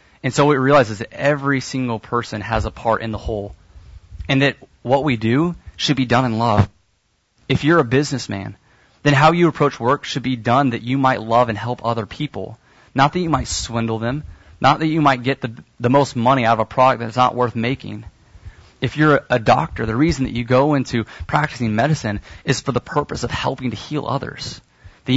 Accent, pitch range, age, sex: American, 110-135 Hz, 30-49, male